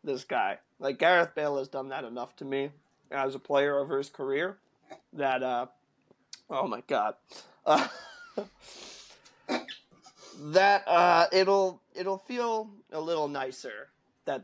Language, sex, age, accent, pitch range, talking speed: English, male, 20-39, American, 130-170 Hz, 135 wpm